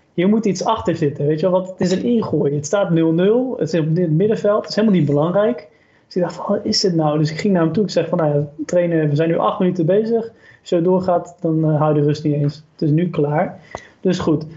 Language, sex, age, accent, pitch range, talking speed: Dutch, male, 20-39, Dutch, 160-195 Hz, 280 wpm